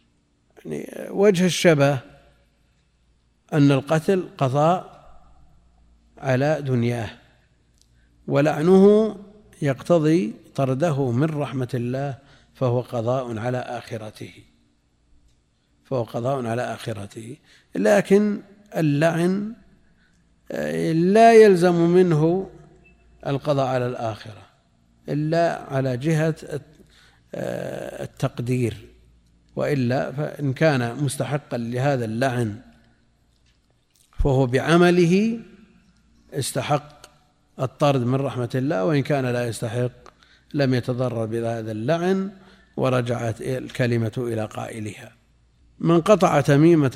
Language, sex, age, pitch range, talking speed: Arabic, male, 50-69, 115-160 Hz, 80 wpm